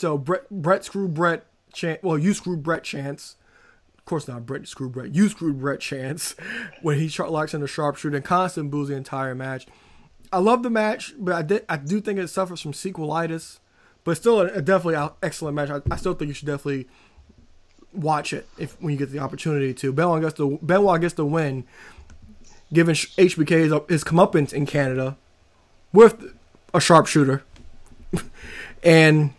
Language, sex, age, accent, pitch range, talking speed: English, male, 20-39, American, 140-180 Hz, 180 wpm